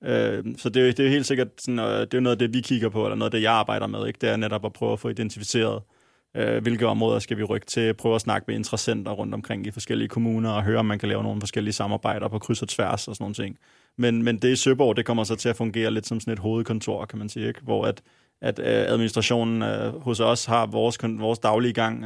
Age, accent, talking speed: 20-39, native, 270 wpm